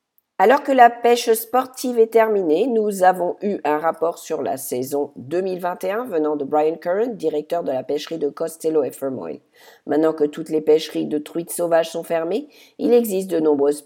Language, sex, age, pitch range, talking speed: English, female, 50-69, 155-220 Hz, 180 wpm